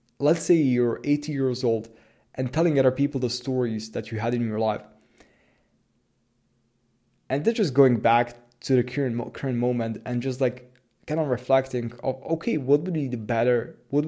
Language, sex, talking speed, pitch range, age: English, male, 175 wpm, 120-135 Hz, 20-39